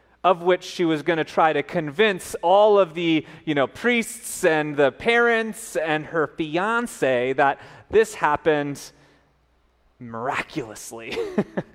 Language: English